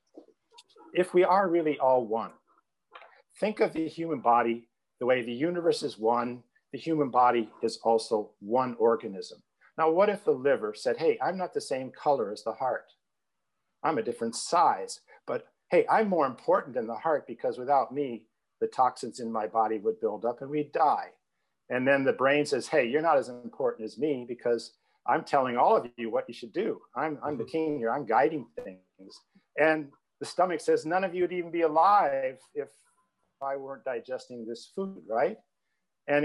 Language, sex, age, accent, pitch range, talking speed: English, male, 50-69, American, 115-180 Hz, 190 wpm